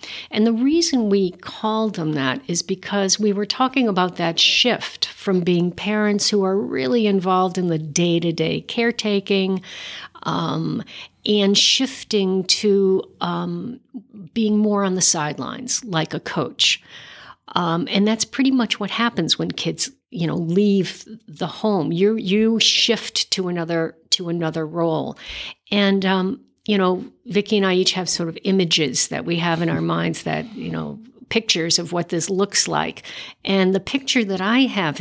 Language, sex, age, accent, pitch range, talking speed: English, female, 60-79, American, 170-210 Hz, 160 wpm